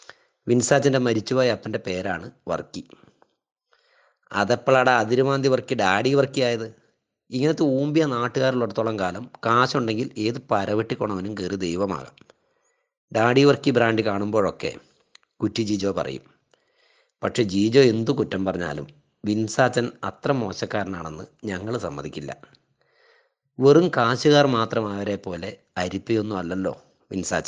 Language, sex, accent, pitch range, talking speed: English, male, Indian, 100-130 Hz, 90 wpm